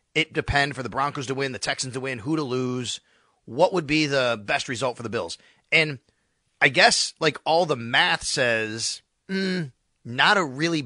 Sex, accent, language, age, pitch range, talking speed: male, American, English, 30-49, 130-180 Hz, 195 wpm